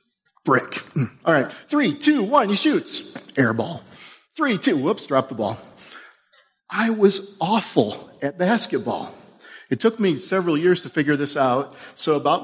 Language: English